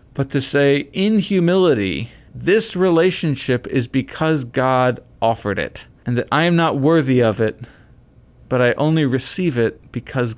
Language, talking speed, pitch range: English, 150 wpm, 110-140 Hz